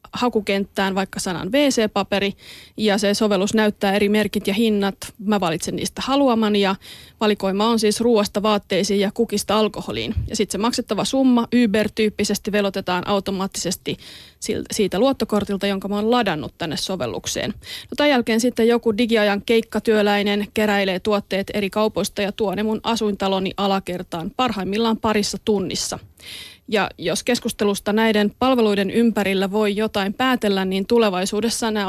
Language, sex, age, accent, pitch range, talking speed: Finnish, female, 30-49, native, 195-230 Hz, 135 wpm